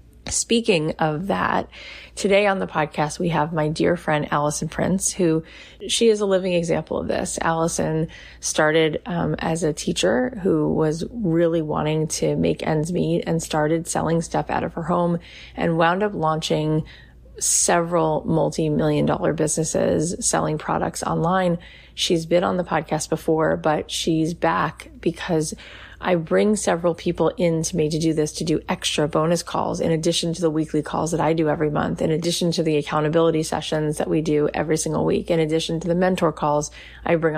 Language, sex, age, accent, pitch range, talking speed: English, female, 30-49, American, 155-175 Hz, 180 wpm